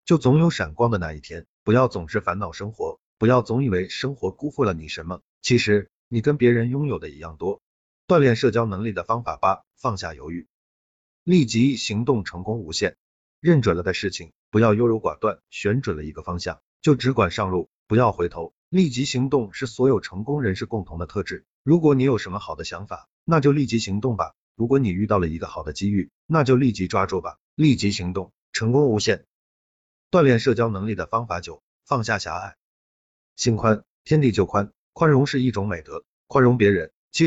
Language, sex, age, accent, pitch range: Chinese, male, 50-69, native, 95-135 Hz